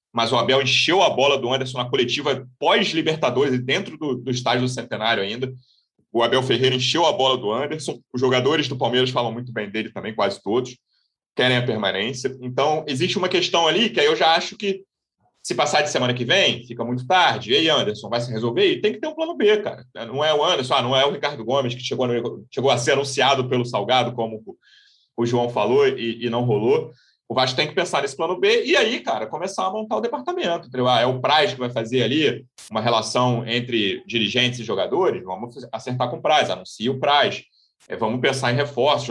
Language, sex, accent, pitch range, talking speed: Portuguese, male, Brazilian, 120-155 Hz, 220 wpm